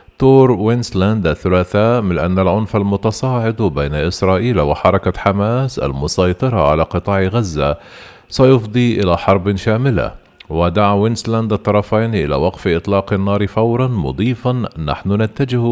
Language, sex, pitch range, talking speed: Arabic, male, 90-115 Hz, 115 wpm